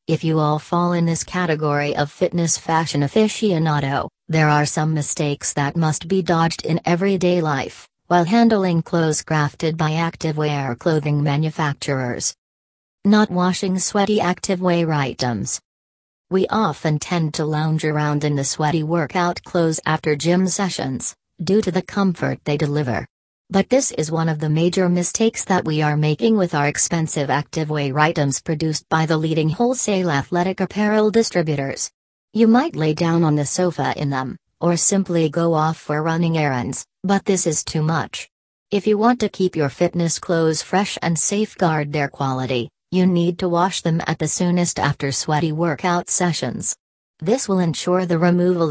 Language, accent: English, American